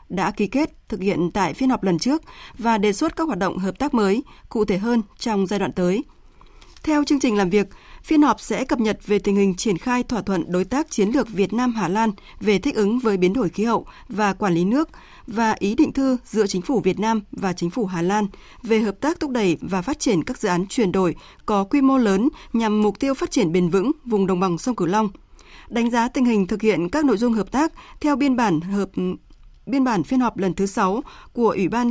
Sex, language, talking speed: female, Vietnamese, 250 wpm